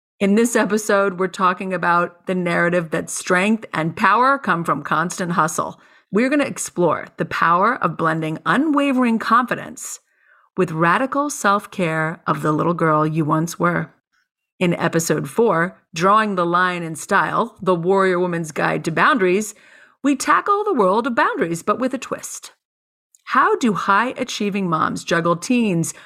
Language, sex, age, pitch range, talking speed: English, female, 40-59, 170-235 Hz, 150 wpm